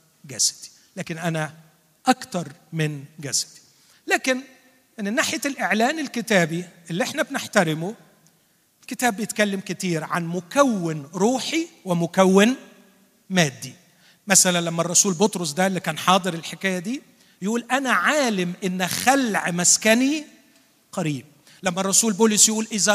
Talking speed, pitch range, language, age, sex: 115 wpm, 165-220 Hz, Arabic, 40-59, male